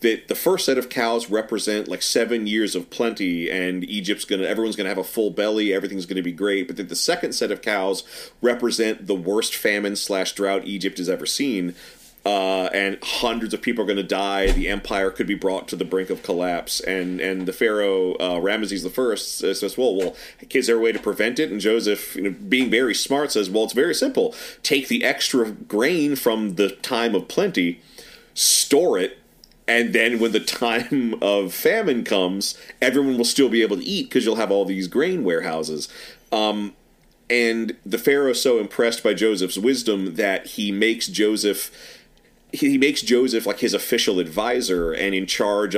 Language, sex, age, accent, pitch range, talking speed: English, male, 30-49, American, 95-120 Hz, 195 wpm